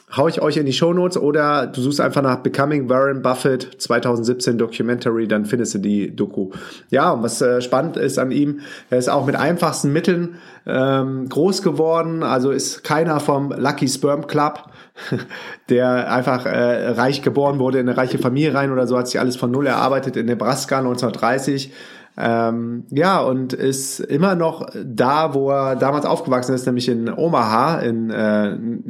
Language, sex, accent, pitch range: German, male, German, 125-145 Hz